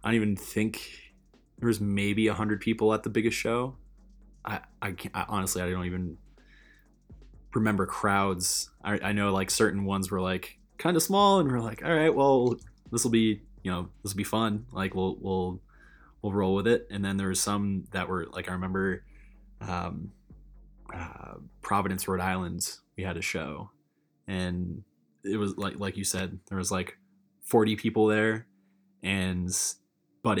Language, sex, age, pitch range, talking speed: Slovak, male, 20-39, 95-110 Hz, 180 wpm